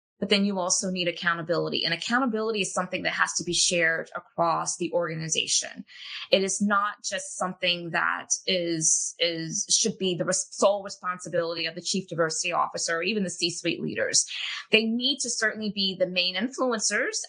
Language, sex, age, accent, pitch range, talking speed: English, female, 20-39, American, 180-240 Hz, 175 wpm